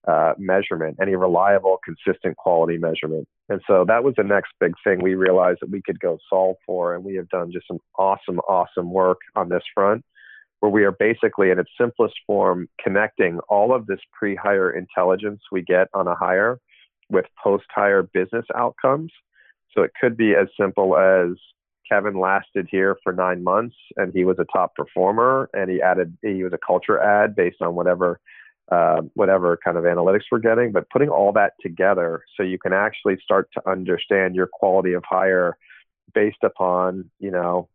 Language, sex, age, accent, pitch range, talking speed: English, male, 40-59, American, 90-105 Hz, 185 wpm